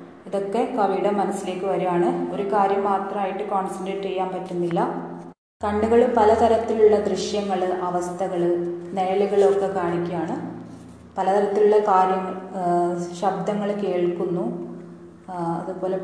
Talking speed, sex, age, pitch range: 80 wpm, female, 20-39, 185-215 Hz